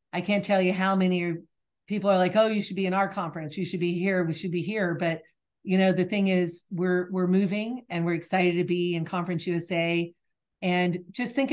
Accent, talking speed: American, 230 wpm